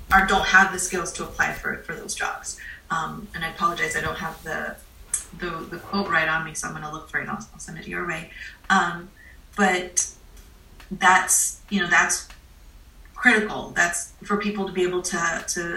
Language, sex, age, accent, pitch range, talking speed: English, female, 30-49, American, 160-195 Hz, 195 wpm